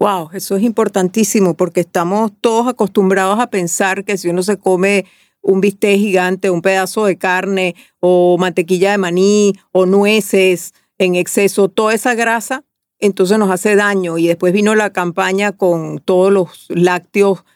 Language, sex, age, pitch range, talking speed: Spanish, female, 40-59, 185-230 Hz, 155 wpm